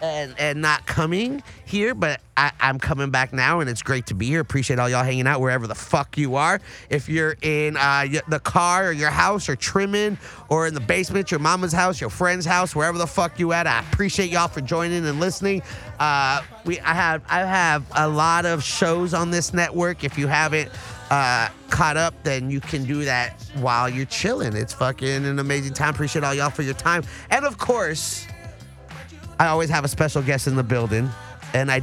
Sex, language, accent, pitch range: male, English, American, 135-175 Hz